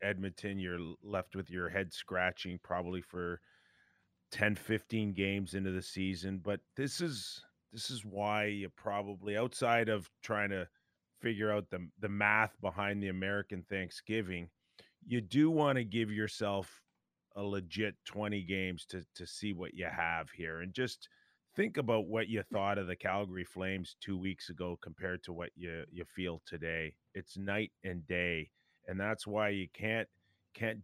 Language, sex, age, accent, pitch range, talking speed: English, male, 30-49, American, 90-105 Hz, 165 wpm